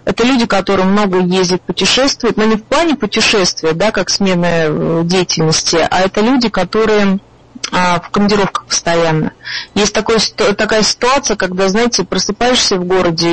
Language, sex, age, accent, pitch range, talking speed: Russian, female, 30-49, native, 180-225 Hz, 155 wpm